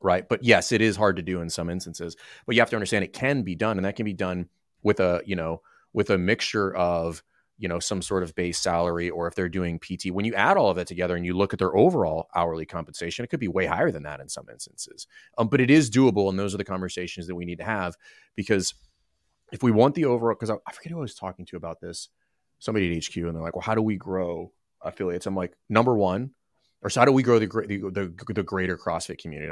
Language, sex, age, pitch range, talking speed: English, male, 30-49, 90-120 Hz, 265 wpm